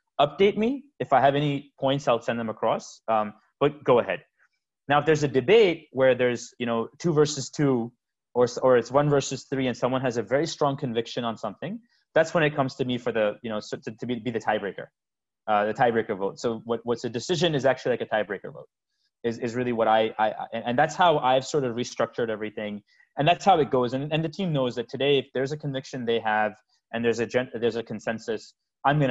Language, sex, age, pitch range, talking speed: English, male, 20-39, 110-140 Hz, 240 wpm